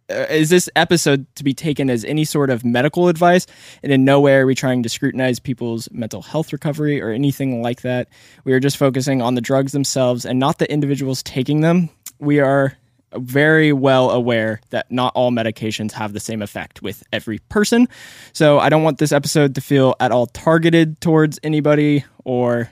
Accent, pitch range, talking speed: American, 125-155 Hz, 195 wpm